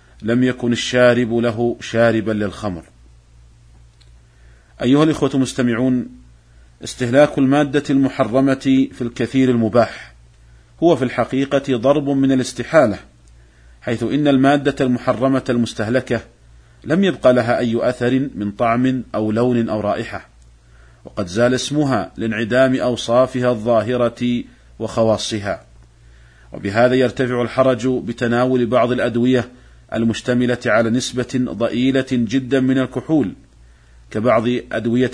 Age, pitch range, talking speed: 40-59, 110-130 Hz, 100 wpm